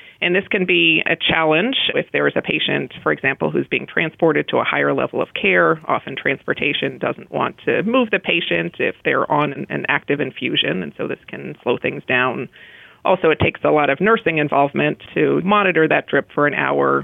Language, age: English, 30-49